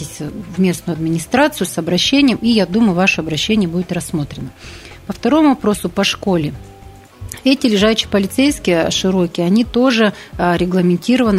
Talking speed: 125 wpm